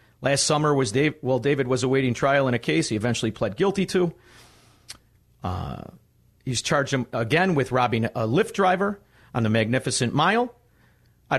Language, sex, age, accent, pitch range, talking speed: English, male, 50-69, American, 120-160 Hz, 170 wpm